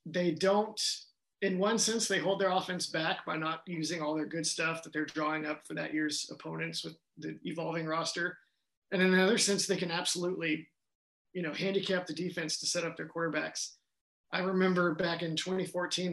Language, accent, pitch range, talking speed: English, American, 160-190 Hz, 190 wpm